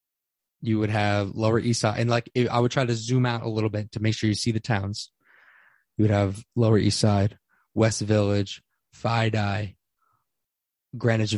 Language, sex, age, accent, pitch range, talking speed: English, male, 20-39, American, 105-120 Hz, 180 wpm